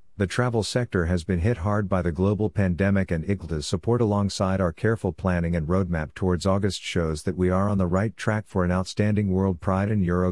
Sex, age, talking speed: male, 50-69, 215 wpm